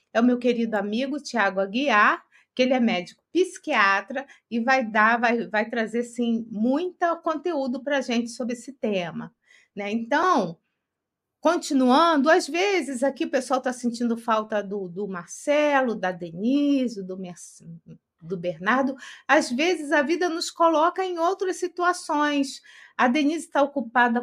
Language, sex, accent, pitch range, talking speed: Portuguese, female, Brazilian, 235-330 Hz, 140 wpm